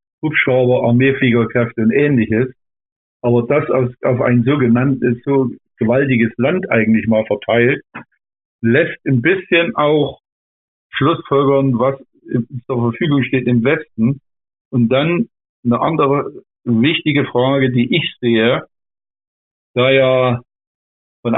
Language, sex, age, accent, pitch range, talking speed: German, male, 50-69, German, 120-140 Hz, 110 wpm